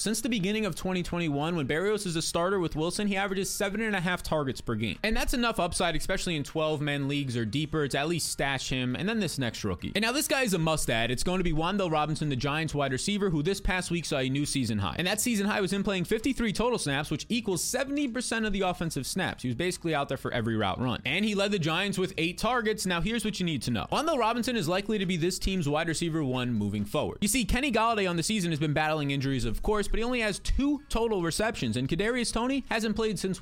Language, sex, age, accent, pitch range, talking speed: English, male, 20-39, American, 145-205 Hz, 260 wpm